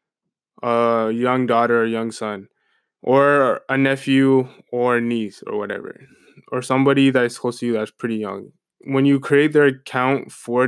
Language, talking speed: English, 155 wpm